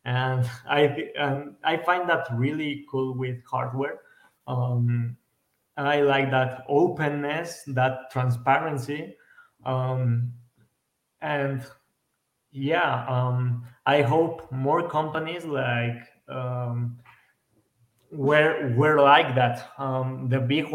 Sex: male